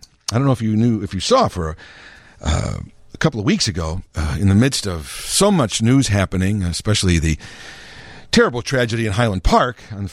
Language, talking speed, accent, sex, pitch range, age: English, 200 wpm, American, male, 100-145 Hz, 50-69